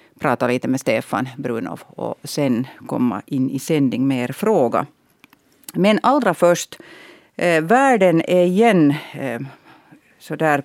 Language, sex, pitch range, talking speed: Swedish, female, 140-190 Hz, 130 wpm